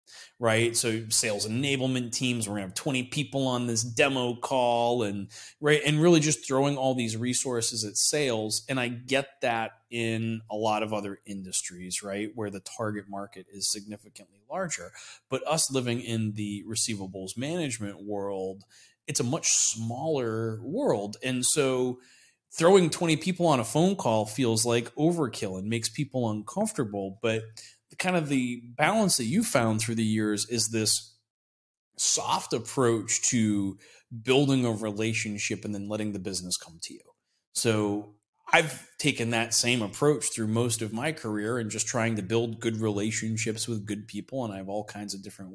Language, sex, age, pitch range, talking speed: English, male, 30-49, 105-125 Hz, 165 wpm